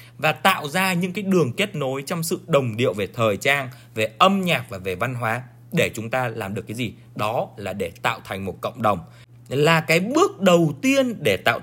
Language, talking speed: Vietnamese, 225 wpm